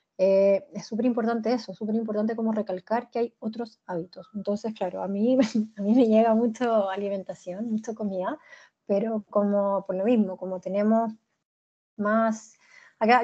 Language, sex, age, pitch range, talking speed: Spanish, female, 20-39, 205-235 Hz, 160 wpm